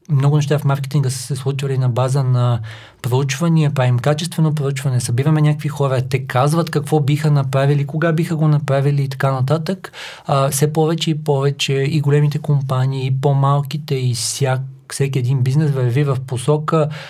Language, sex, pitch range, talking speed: Bulgarian, male, 125-150 Hz, 165 wpm